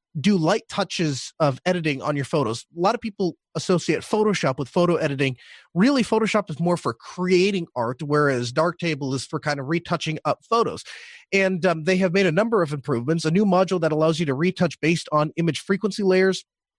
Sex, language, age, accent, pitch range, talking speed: male, English, 30-49, American, 150-190 Hz, 195 wpm